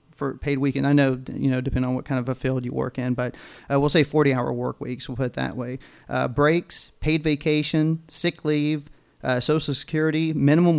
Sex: male